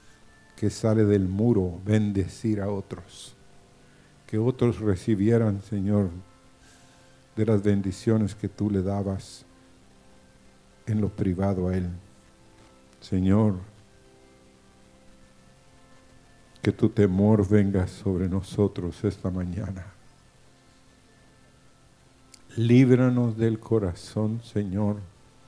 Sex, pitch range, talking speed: male, 95-110 Hz, 85 wpm